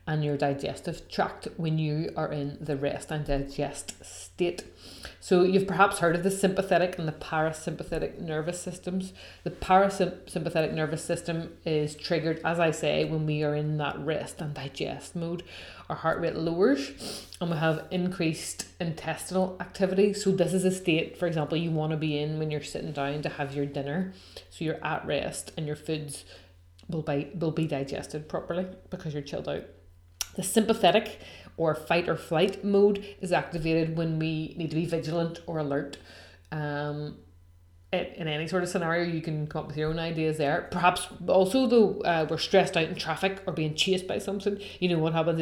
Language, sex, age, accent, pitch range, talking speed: English, female, 30-49, Irish, 150-180 Hz, 185 wpm